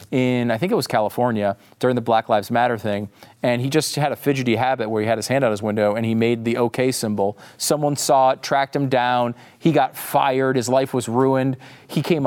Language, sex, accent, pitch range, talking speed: English, male, American, 110-150 Hz, 235 wpm